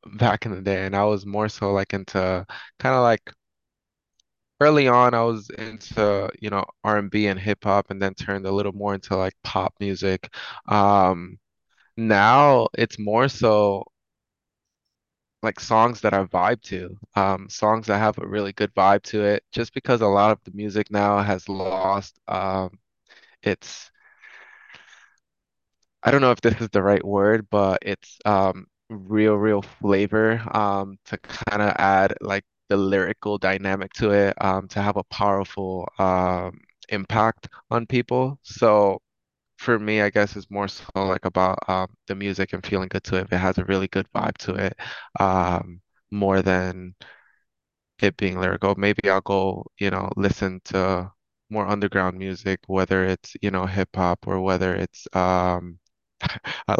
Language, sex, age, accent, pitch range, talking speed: English, male, 20-39, American, 95-105 Hz, 165 wpm